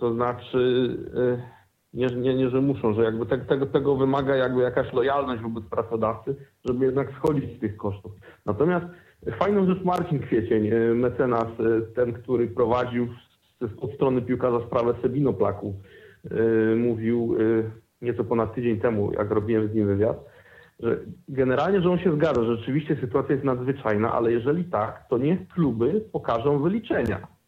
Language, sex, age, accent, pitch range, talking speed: Polish, male, 40-59, native, 120-180 Hz, 155 wpm